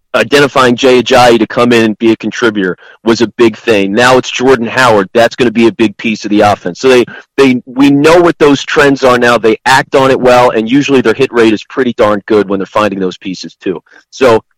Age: 30-49